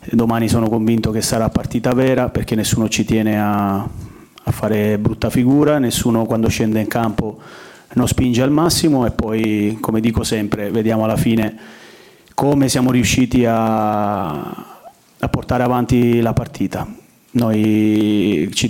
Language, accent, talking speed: Italian, native, 140 wpm